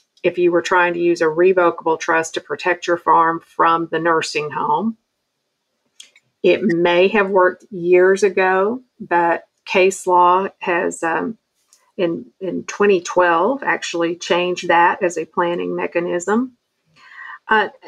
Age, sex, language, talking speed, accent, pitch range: 50-69, female, English, 130 wpm, American, 170-215 Hz